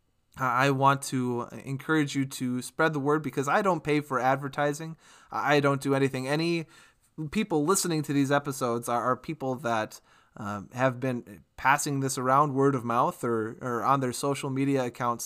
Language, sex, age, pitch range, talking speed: English, male, 20-39, 130-155 Hz, 175 wpm